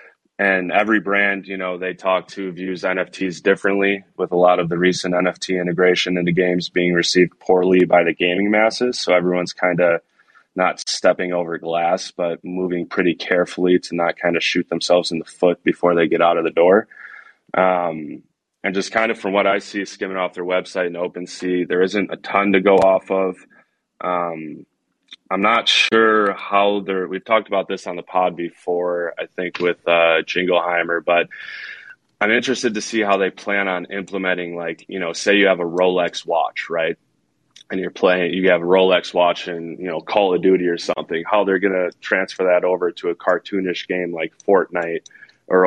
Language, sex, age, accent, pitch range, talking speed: English, male, 20-39, American, 90-95 Hz, 195 wpm